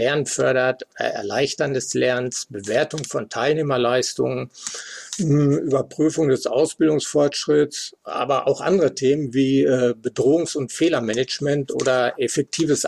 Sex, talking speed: male, 100 wpm